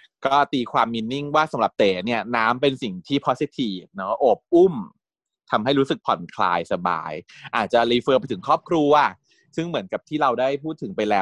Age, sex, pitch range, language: 20-39, male, 115-155 Hz, Thai